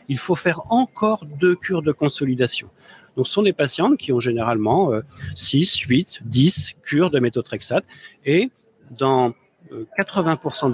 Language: French